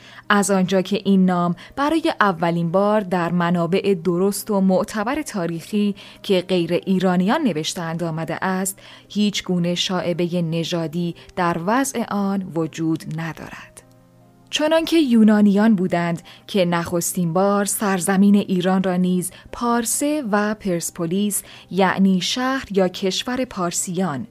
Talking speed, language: 115 wpm, Persian